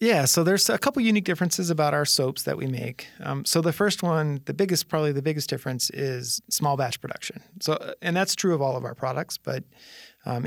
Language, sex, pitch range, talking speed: English, male, 130-155 Hz, 225 wpm